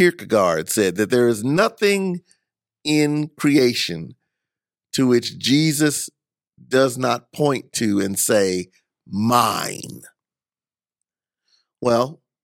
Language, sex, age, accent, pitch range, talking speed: English, male, 50-69, American, 115-150 Hz, 90 wpm